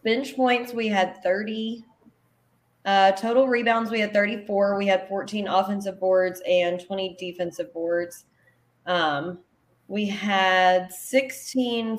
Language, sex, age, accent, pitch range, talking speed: English, female, 20-39, American, 185-225 Hz, 120 wpm